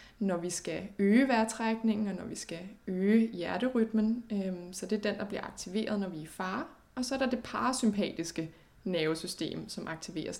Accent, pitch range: native, 175-220 Hz